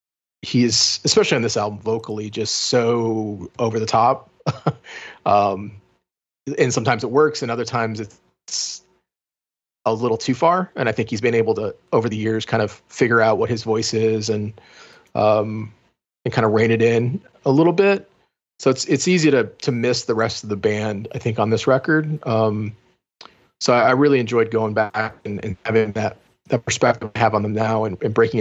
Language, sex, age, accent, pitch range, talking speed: English, male, 30-49, American, 110-130 Hz, 195 wpm